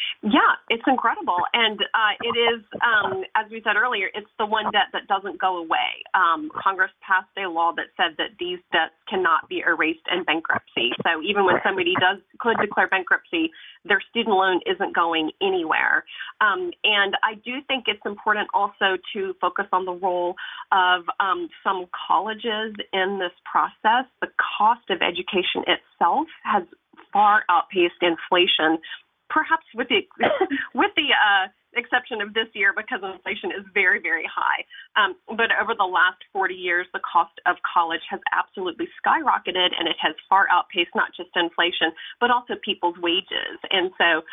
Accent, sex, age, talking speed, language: American, female, 30-49, 165 wpm, English